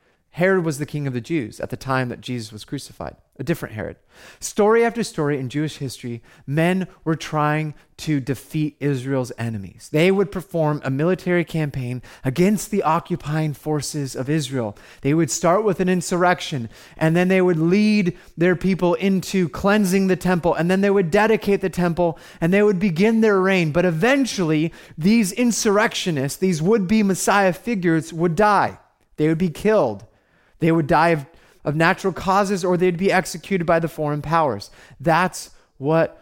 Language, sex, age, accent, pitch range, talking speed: English, male, 30-49, American, 130-180 Hz, 170 wpm